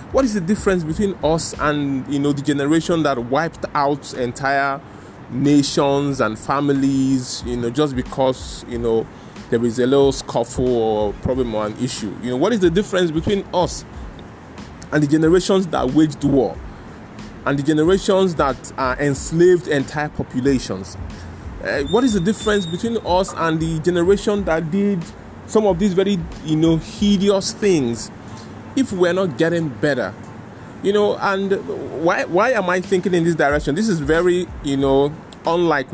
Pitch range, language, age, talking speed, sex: 125-175 Hz, English, 20-39, 165 wpm, male